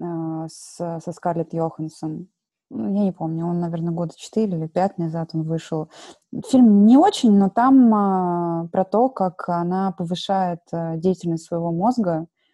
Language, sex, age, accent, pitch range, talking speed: Russian, female, 20-39, native, 165-185 Hz, 135 wpm